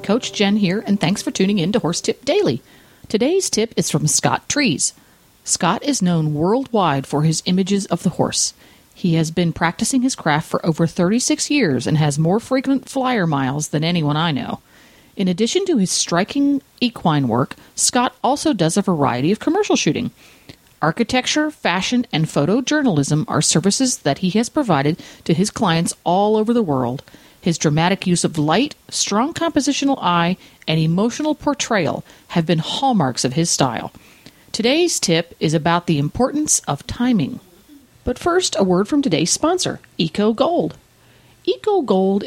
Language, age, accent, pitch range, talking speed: English, 40-59, American, 160-245 Hz, 160 wpm